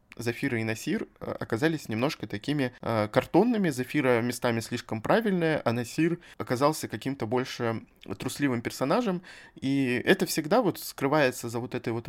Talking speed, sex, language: 135 wpm, male, Russian